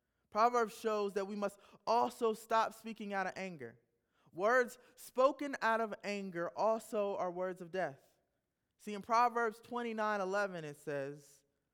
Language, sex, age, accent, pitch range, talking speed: English, male, 20-39, American, 180-225 Hz, 140 wpm